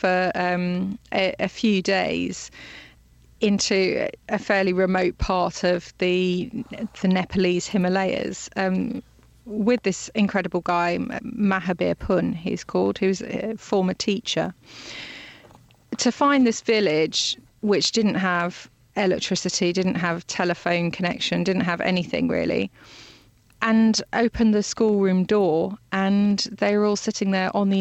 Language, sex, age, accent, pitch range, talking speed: English, female, 30-49, British, 185-225 Hz, 125 wpm